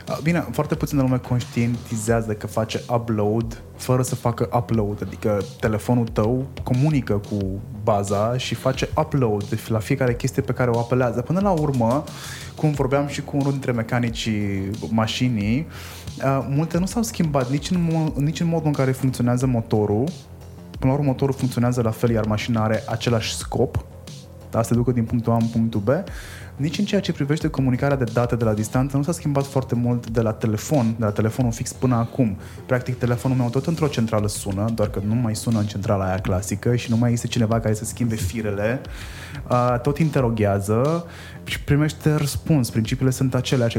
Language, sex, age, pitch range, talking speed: Romanian, male, 20-39, 110-135 Hz, 180 wpm